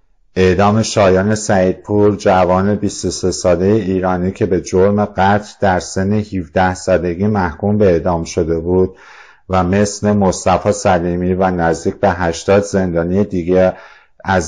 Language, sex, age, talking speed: Persian, male, 50-69, 135 wpm